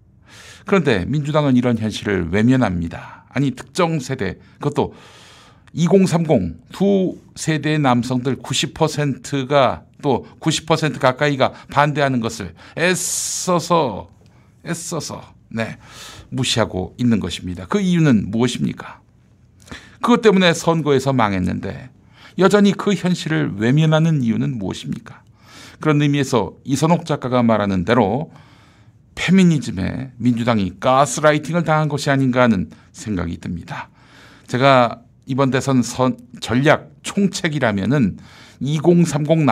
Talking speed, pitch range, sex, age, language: 90 wpm, 115-160 Hz, male, 60-79, English